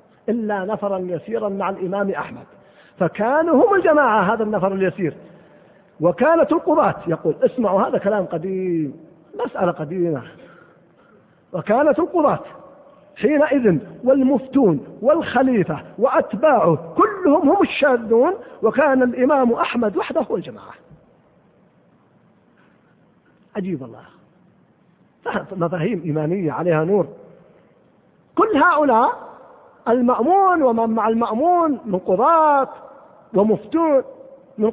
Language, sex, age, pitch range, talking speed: Arabic, male, 40-59, 180-275 Hz, 90 wpm